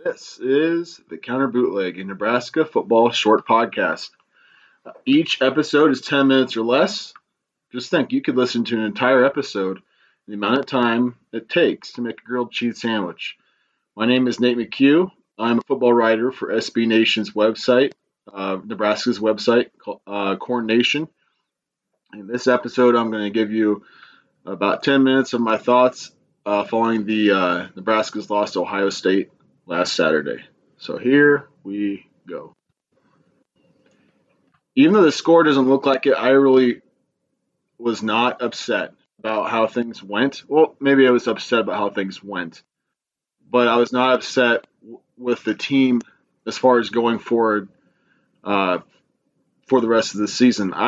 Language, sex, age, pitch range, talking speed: English, male, 30-49, 110-130 Hz, 155 wpm